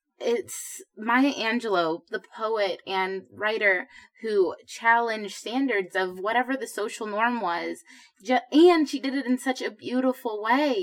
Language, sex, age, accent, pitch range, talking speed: English, female, 20-39, American, 215-265 Hz, 140 wpm